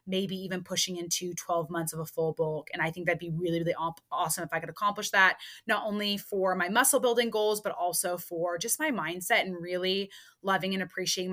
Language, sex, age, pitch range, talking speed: English, female, 20-39, 180-245 Hz, 215 wpm